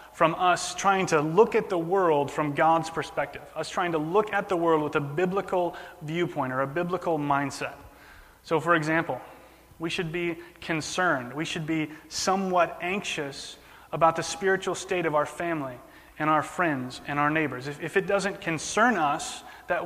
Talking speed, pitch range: 175 wpm, 150-180 Hz